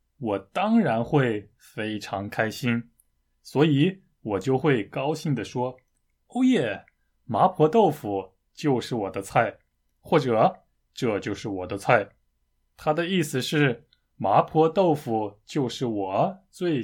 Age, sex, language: 20-39, male, Chinese